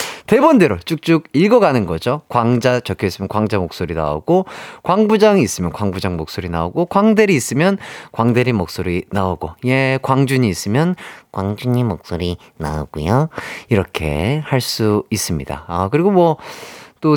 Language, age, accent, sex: Korean, 30-49, native, male